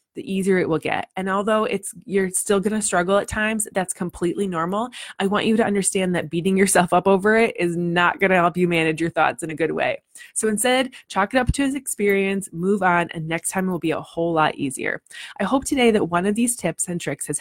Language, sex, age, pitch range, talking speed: English, female, 20-39, 175-210 Hz, 245 wpm